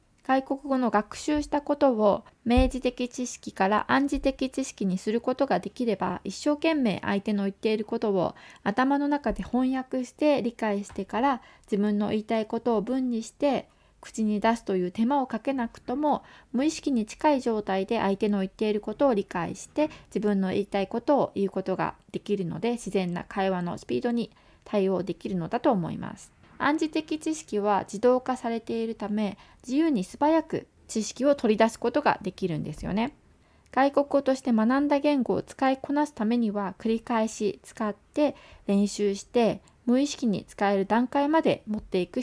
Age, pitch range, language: 20-39, 200-270 Hz, Japanese